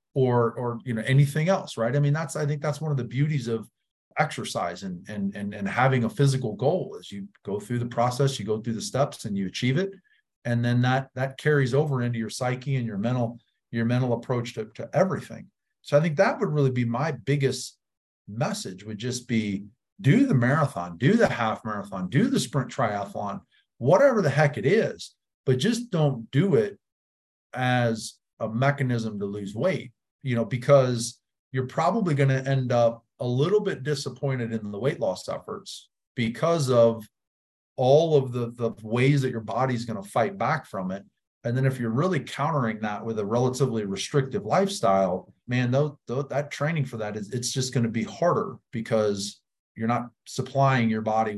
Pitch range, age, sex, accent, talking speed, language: 110-140 Hz, 40-59, male, American, 195 wpm, English